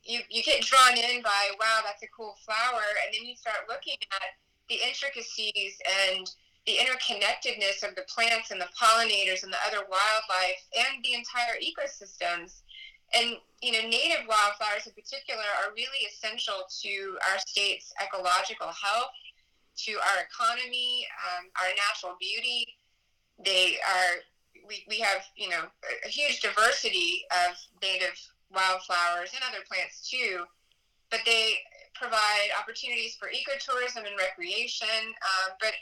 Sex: female